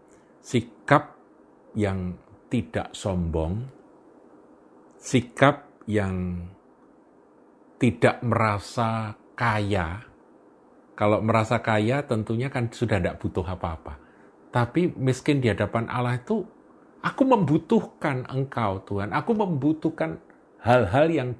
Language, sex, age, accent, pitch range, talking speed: Indonesian, male, 50-69, native, 95-130 Hz, 90 wpm